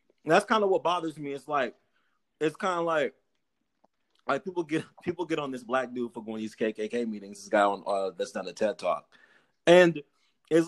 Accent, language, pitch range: American, English, 145-190 Hz